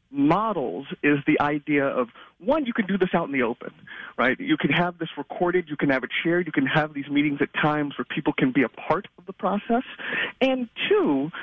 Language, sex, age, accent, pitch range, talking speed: English, male, 40-59, American, 150-205 Hz, 225 wpm